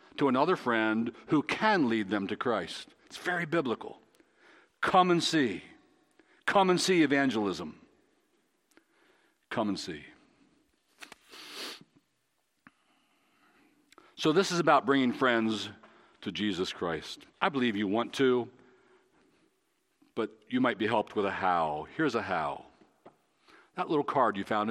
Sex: male